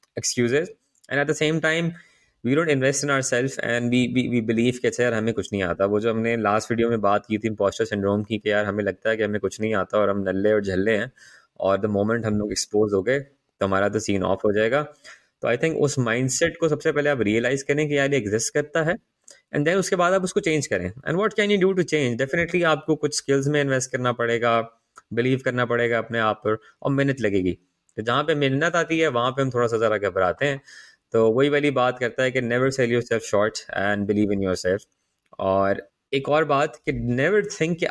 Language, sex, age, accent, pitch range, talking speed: Hindi, male, 20-39, native, 105-140 Hz, 215 wpm